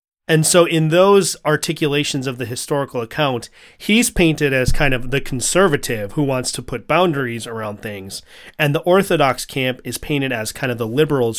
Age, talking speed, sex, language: 30-49, 180 wpm, male, English